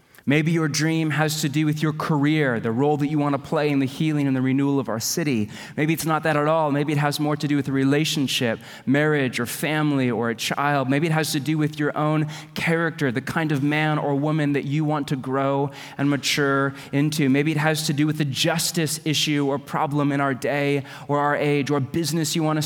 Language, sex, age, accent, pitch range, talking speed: English, male, 30-49, American, 135-160 Hz, 235 wpm